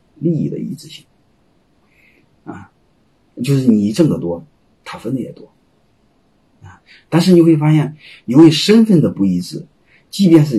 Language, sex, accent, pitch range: Chinese, male, native, 115-165 Hz